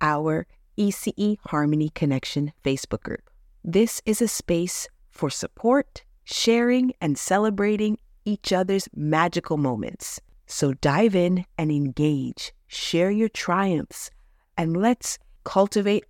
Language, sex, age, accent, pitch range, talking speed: English, female, 30-49, American, 150-215 Hz, 110 wpm